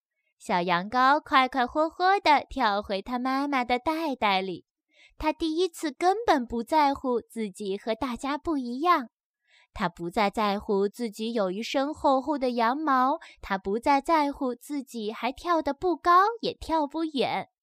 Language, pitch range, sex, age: Chinese, 215-310 Hz, female, 10-29